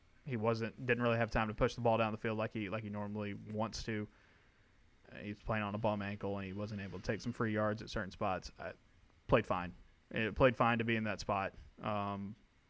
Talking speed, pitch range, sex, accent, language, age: 235 wpm, 100-125 Hz, male, American, English, 20-39